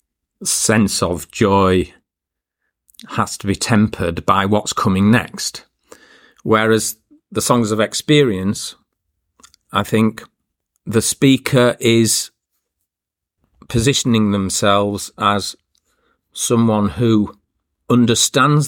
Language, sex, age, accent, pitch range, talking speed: English, male, 40-59, British, 95-115 Hz, 85 wpm